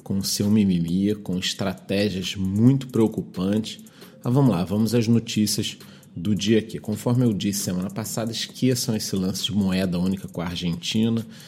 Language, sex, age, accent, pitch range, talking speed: Portuguese, male, 40-59, Brazilian, 100-120 Hz, 160 wpm